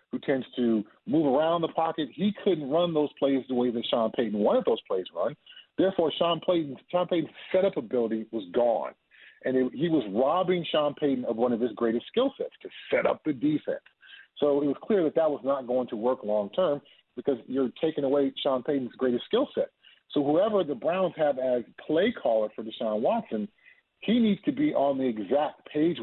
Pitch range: 130-195 Hz